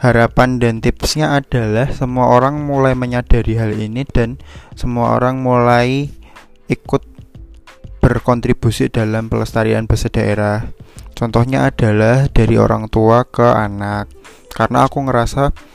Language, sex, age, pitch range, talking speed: Indonesian, male, 20-39, 110-125 Hz, 115 wpm